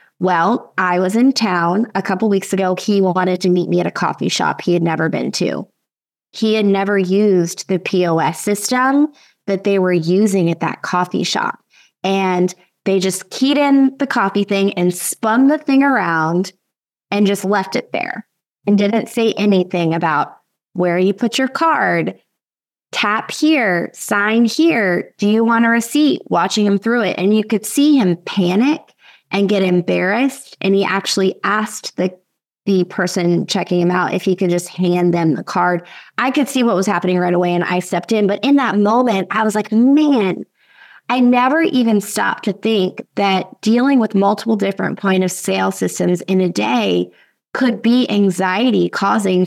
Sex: female